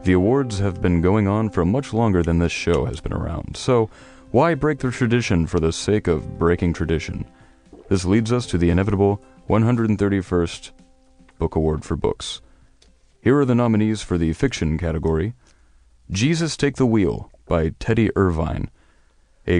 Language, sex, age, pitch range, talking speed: English, male, 30-49, 85-110 Hz, 160 wpm